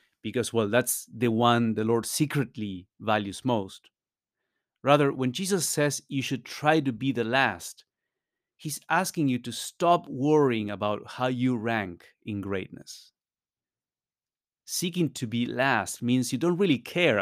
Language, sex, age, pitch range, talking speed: English, male, 30-49, 115-145 Hz, 145 wpm